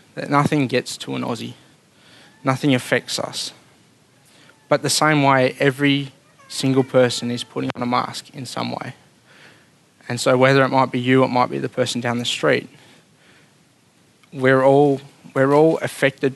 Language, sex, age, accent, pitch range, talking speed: English, male, 20-39, Australian, 125-145 Hz, 160 wpm